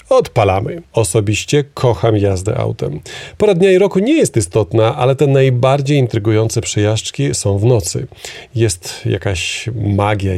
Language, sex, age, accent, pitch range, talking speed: Polish, male, 40-59, native, 105-135 Hz, 135 wpm